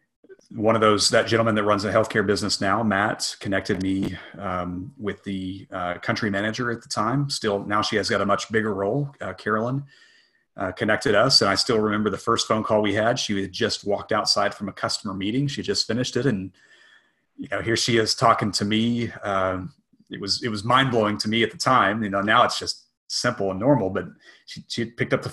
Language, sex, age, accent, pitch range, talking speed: English, male, 30-49, American, 95-115 Hz, 225 wpm